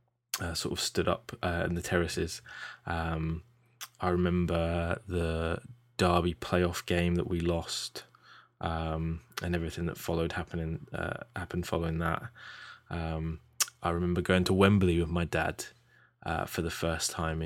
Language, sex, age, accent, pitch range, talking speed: English, male, 20-39, British, 85-100 Hz, 150 wpm